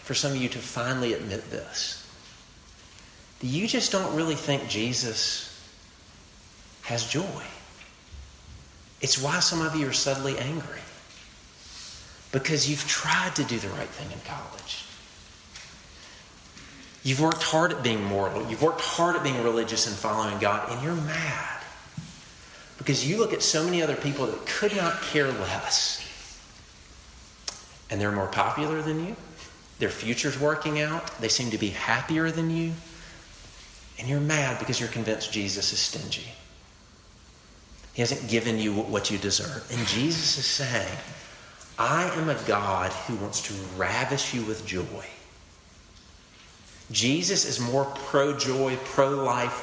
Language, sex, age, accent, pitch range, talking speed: English, male, 40-59, American, 100-145 Hz, 145 wpm